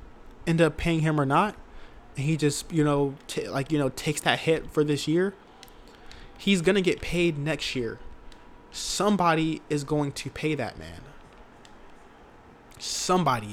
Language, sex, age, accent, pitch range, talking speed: English, male, 20-39, American, 145-175 Hz, 155 wpm